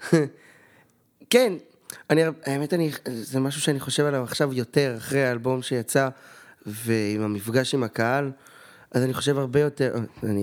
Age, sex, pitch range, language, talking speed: 20-39, male, 120-150 Hz, Hebrew, 140 wpm